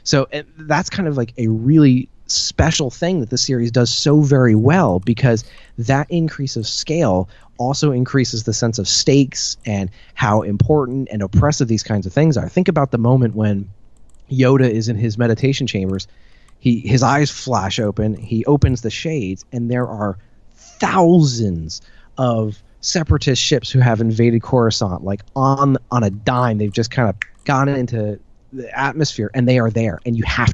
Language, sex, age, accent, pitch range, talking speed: English, male, 30-49, American, 110-140 Hz, 175 wpm